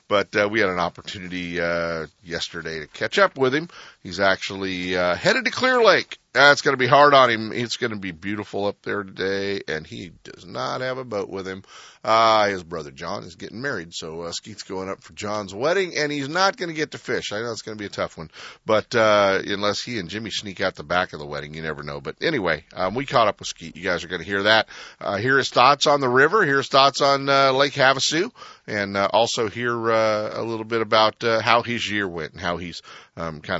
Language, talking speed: English, 250 wpm